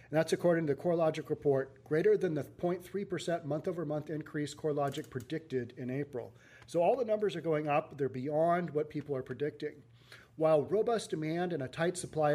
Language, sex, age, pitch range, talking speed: English, male, 40-59, 130-160 Hz, 180 wpm